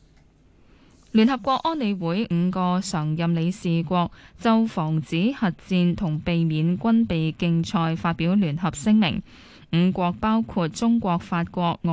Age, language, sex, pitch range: 10-29, Chinese, female, 170-220 Hz